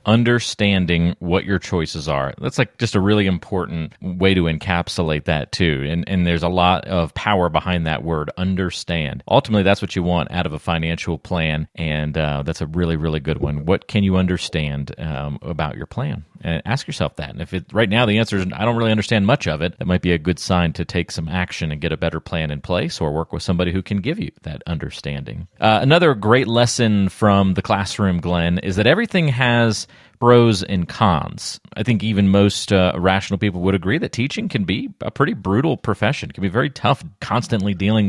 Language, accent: English, American